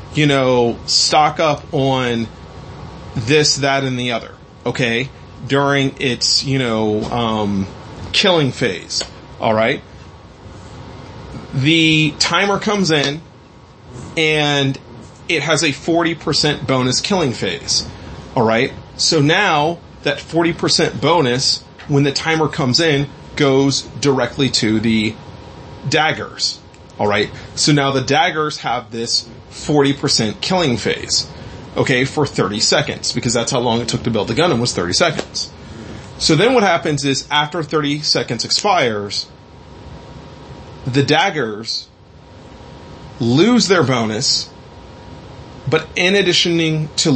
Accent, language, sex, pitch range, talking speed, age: American, English, male, 120-150 Hz, 125 wpm, 30-49